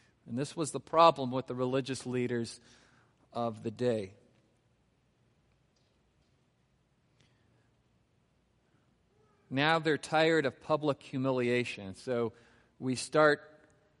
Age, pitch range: 40-59, 125-155 Hz